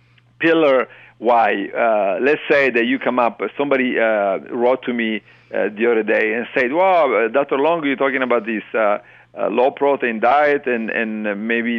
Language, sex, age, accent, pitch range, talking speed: English, male, 50-69, Italian, 115-140 Hz, 190 wpm